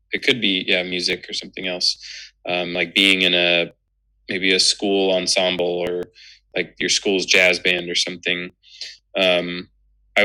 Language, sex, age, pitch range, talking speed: English, male, 20-39, 90-110 Hz, 160 wpm